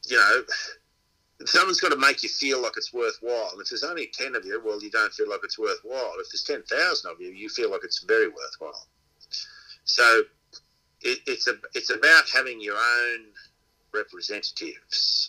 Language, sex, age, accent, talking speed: English, male, 50-69, Australian, 175 wpm